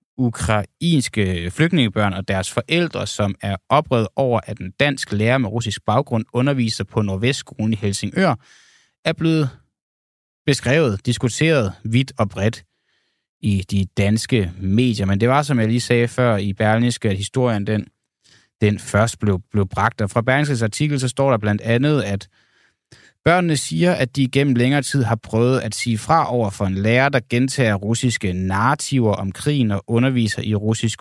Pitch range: 105-130 Hz